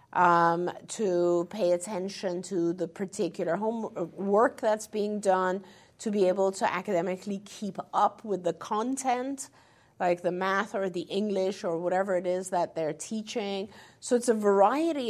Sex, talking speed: female, 150 wpm